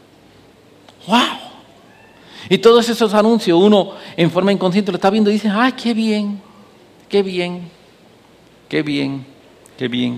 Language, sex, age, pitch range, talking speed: English, male, 50-69, 140-180 Hz, 135 wpm